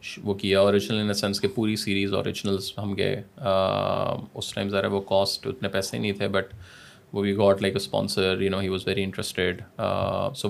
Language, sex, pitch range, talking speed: Urdu, male, 95-110 Hz, 195 wpm